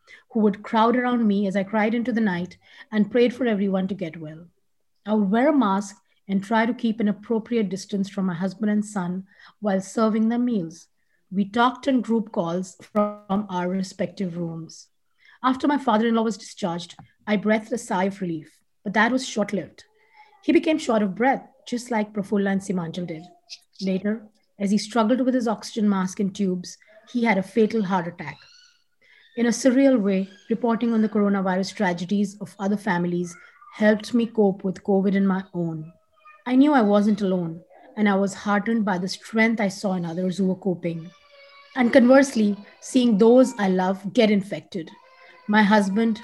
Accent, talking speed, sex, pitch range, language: Indian, 180 wpm, female, 190-230 Hz, English